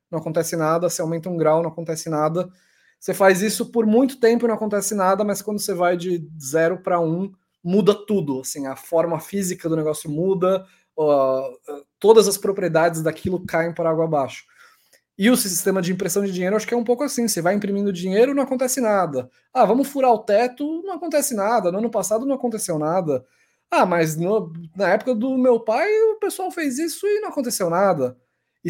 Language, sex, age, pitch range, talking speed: Portuguese, male, 20-39, 165-235 Hz, 195 wpm